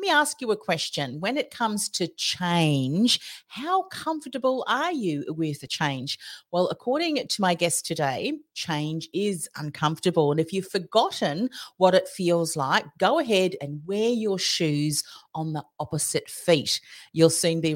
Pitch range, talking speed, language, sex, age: 155-210 Hz, 160 wpm, English, female, 40-59